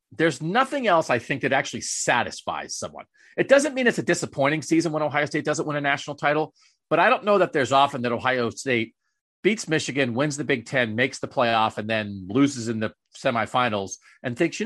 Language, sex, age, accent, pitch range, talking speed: English, male, 40-59, American, 125-175 Hz, 215 wpm